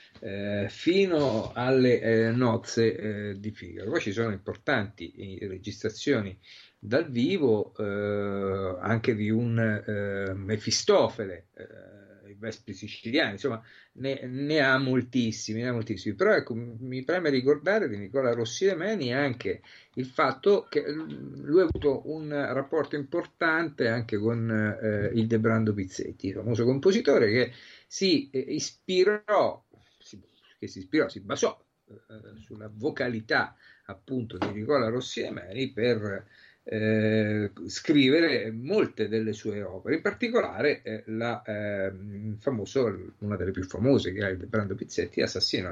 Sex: male